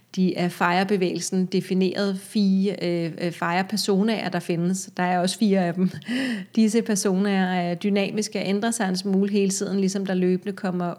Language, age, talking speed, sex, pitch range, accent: Danish, 30-49, 160 wpm, female, 175-195 Hz, native